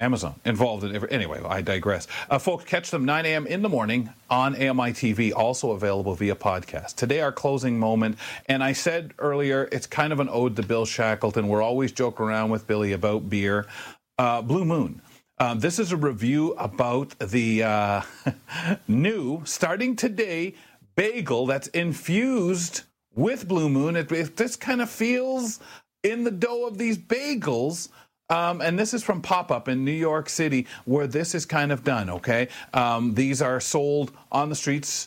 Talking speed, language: 175 wpm, English